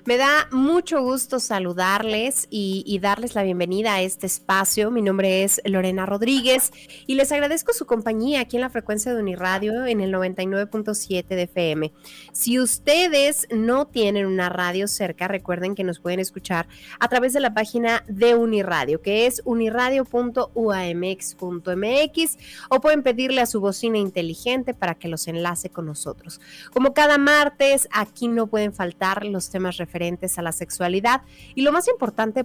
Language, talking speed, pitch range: Spanish, 160 wpm, 185-245 Hz